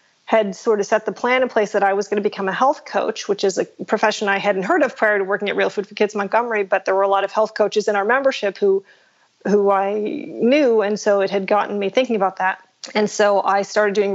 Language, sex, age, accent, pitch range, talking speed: English, female, 30-49, American, 200-235 Hz, 265 wpm